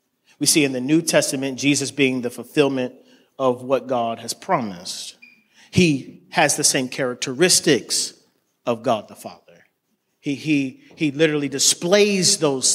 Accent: American